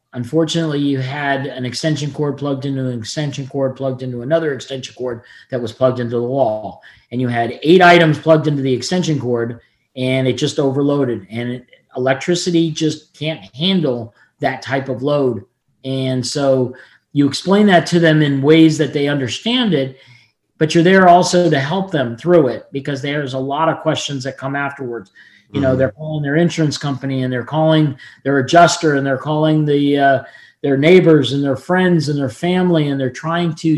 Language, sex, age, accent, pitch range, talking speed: English, male, 40-59, American, 130-160 Hz, 185 wpm